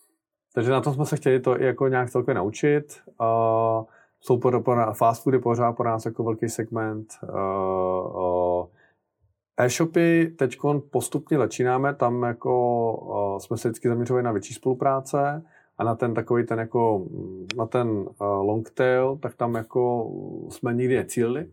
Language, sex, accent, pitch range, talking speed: Czech, male, native, 100-125 Hz, 145 wpm